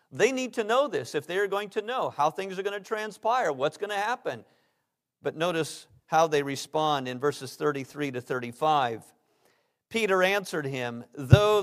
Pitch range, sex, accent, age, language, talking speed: 145-205 Hz, male, American, 50-69, English, 175 wpm